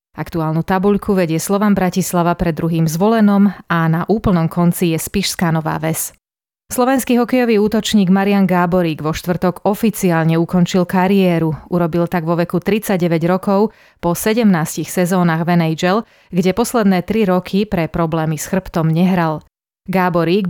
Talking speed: 140 wpm